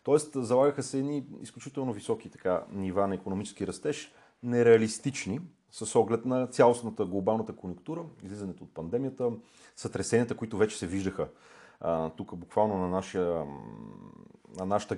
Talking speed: 130 wpm